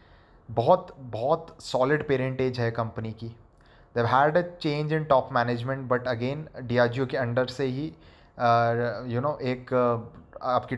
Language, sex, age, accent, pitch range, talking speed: Hindi, male, 20-39, native, 120-150 Hz, 160 wpm